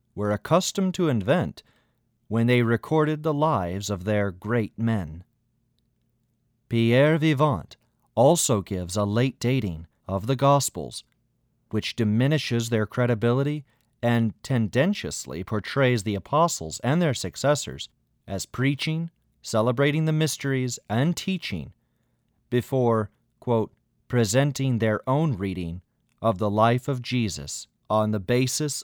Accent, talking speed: American, 115 wpm